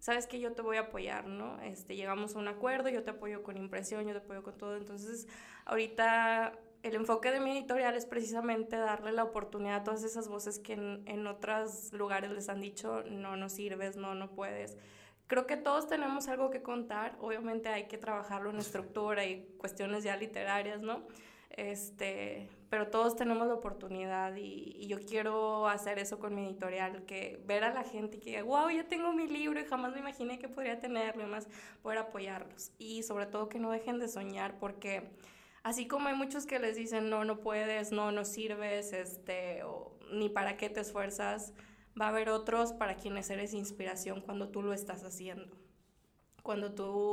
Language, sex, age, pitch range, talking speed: Spanish, female, 20-39, 200-220 Hz, 195 wpm